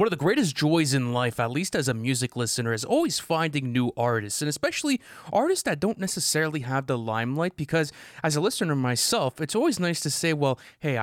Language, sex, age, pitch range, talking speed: English, male, 20-39, 125-155 Hz, 210 wpm